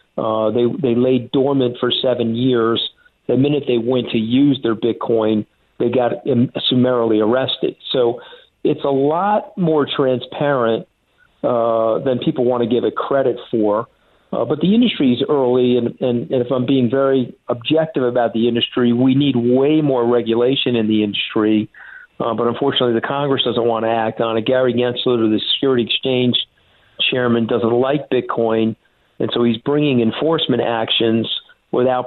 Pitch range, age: 115-130 Hz, 50-69